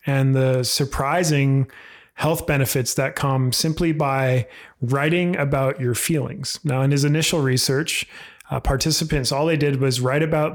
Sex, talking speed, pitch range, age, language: male, 150 wpm, 130-150 Hz, 30-49, English